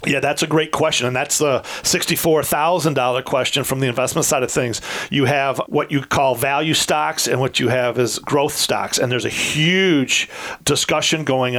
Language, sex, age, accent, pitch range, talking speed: English, male, 40-59, American, 125-145 Hz, 185 wpm